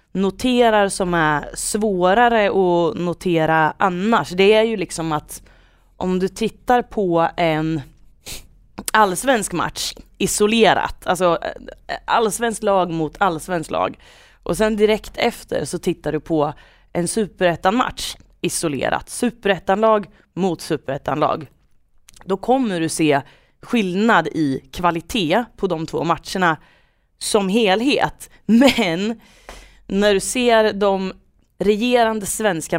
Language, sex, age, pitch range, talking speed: Swedish, female, 30-49, 165-215 Hz, 115 wpm